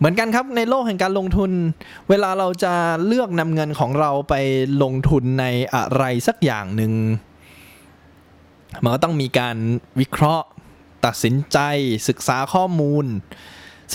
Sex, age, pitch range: male, 20-39, 110-155 Hz